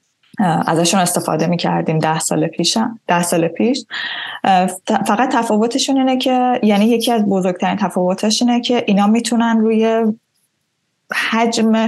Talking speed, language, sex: 125 wpm, English, female